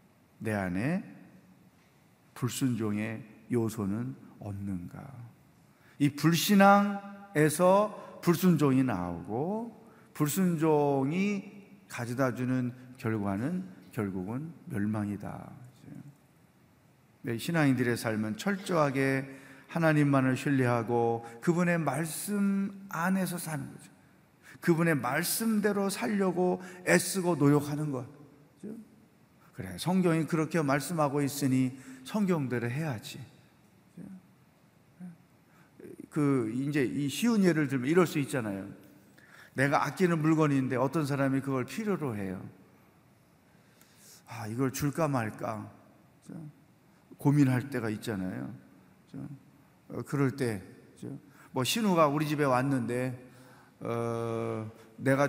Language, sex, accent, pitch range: Korean, male, native, 125-165 Hz